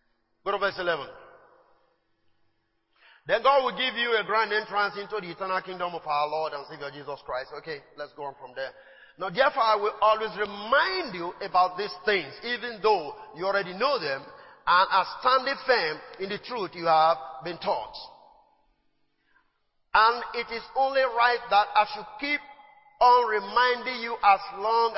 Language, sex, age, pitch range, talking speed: English, male, 40-59, 190-260 Hz, 170 wpm